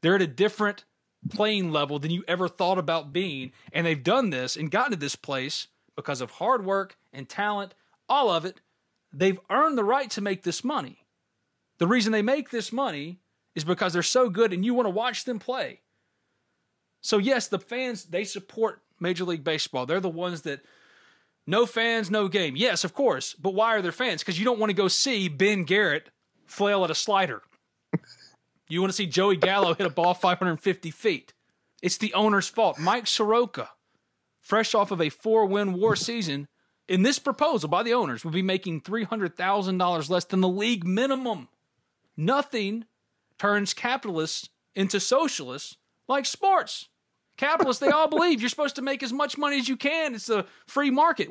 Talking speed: 185 wpm